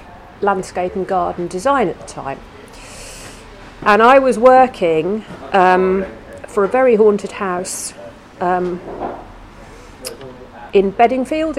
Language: English